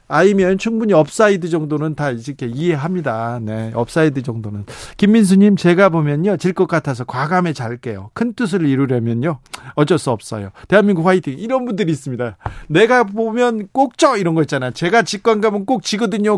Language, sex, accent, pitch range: Korean, male, native, 140-200 Hz